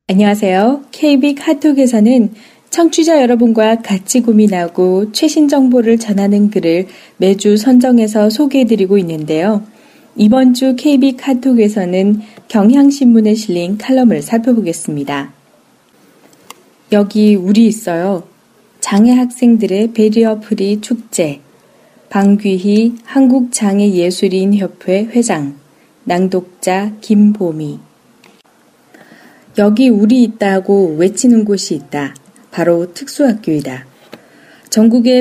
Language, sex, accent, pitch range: Korean, female, native, 185-240 Hz